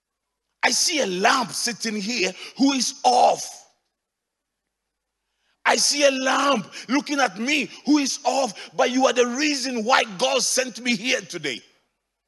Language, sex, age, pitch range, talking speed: English, male, 40-59, 230-285 Hz, 145 wpm